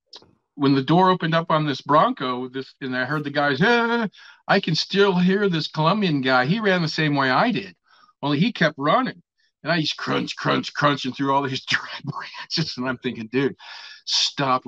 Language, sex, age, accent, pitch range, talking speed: English, male, 50-69, American, 125-165 Hz, 200 wpm